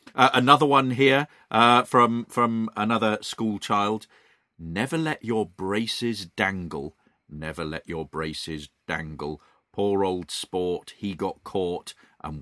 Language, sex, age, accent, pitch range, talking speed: English, male, 40-59, British, 80-105 Hz, 130 wpm